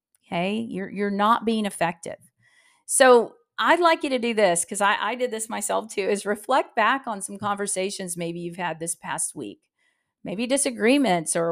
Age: 40-59